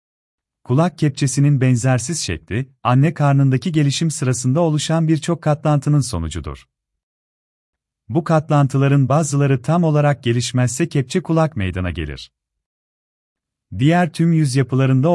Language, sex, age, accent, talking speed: Turkish, male, 40-59, native, 105 wpm